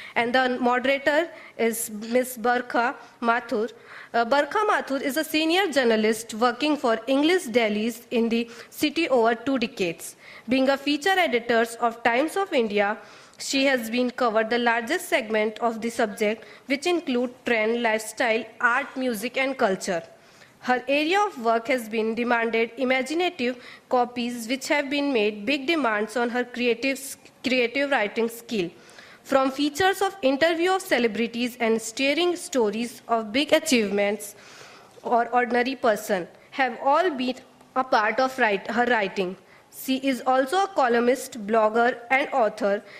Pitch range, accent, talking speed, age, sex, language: 230-275 Hz, Indian, 140 wpm, 30-49, female, English